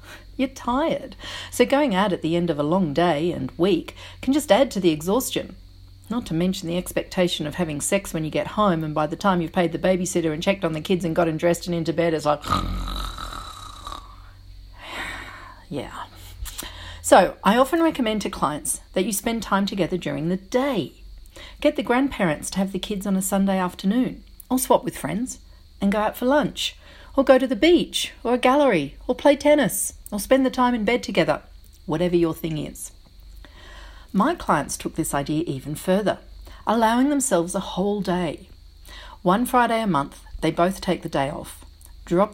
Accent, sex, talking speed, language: Australian, female, 190 wpm, English